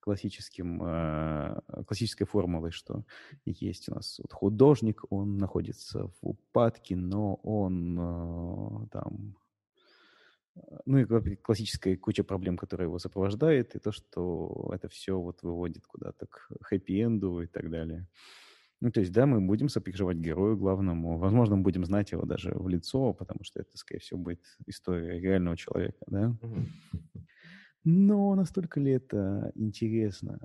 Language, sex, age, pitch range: Russian, male, 30-49, 90-110 Hz